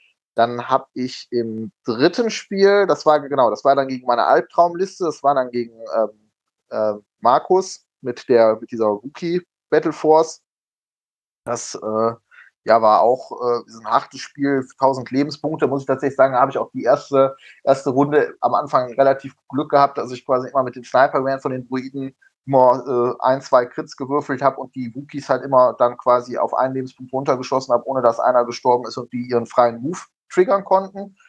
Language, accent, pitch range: German, German, 120-140 Hz